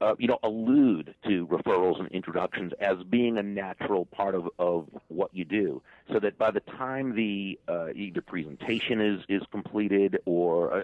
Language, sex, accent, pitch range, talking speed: English, male, American, 90-110 Hz, 175 wpm